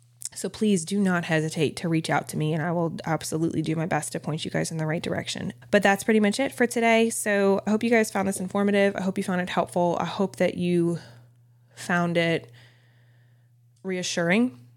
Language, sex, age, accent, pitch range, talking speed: English, female, 20-39, American, 155-200 Hz, 215 wpm